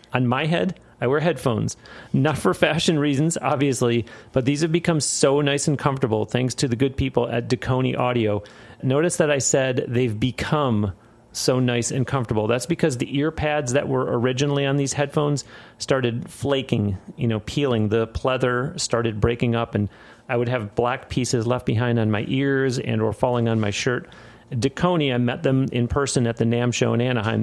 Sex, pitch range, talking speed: male, 115-145 Hz, 190 wpm